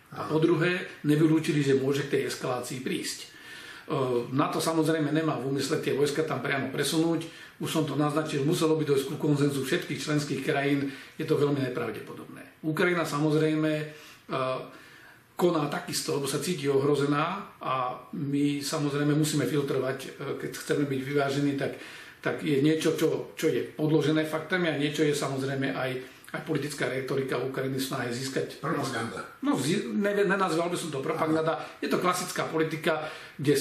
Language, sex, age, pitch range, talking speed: Slovak, male, 40-59, 140-160 Hz, 155 wpm